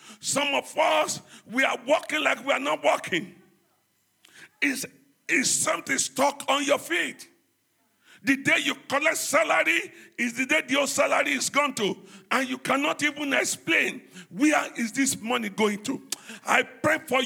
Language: English